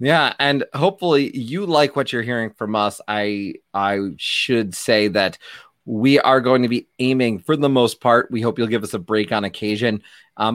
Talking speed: 200 wpm